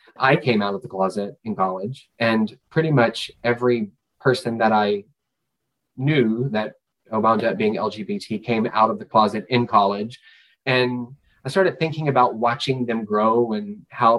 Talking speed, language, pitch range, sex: 160 wpm, English, 110-135 Hz, male